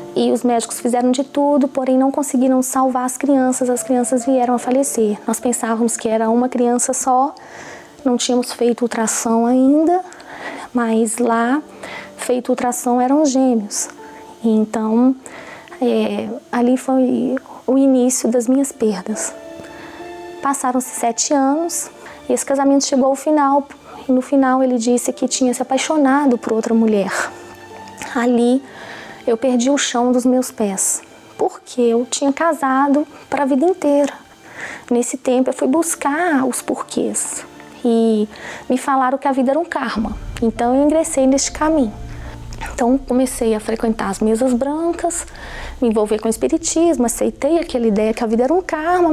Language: Portuguese